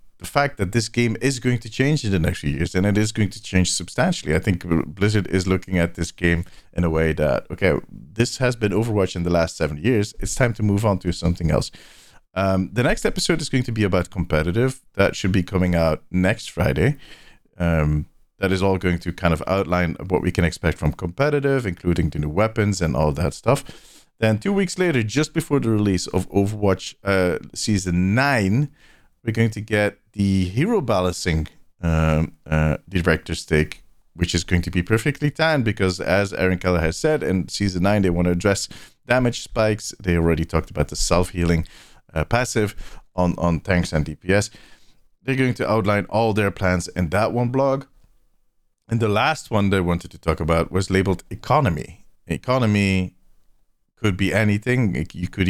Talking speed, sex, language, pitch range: 195 wpm, male, English, 85-110 Hz